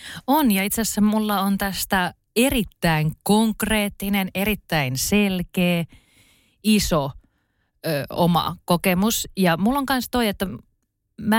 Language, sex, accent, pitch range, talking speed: Finnish, female, native, 170-225 Hz, 115 wpm